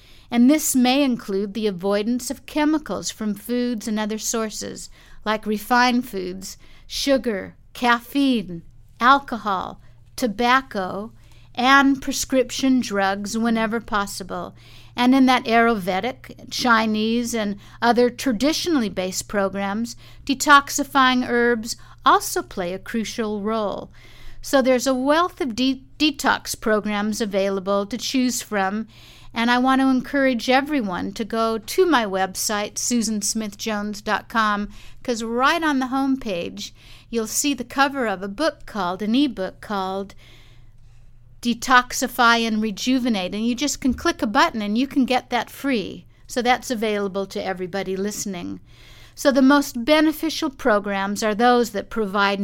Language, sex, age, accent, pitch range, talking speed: English, female, 50-69, American, 200-260 Hz, 130 wpm